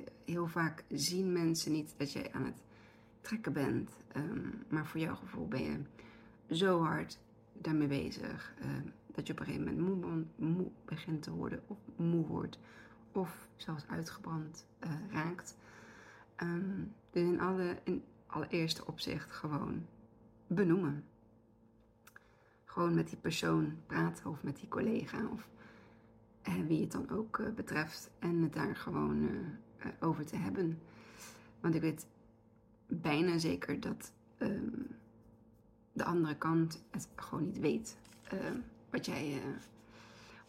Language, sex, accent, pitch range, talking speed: Dutch, female, Dutch, 115-170 Hz, 135 wpm